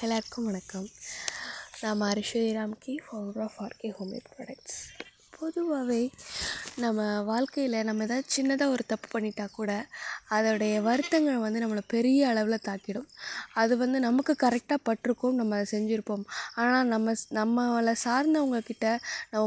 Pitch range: 210-245 Hz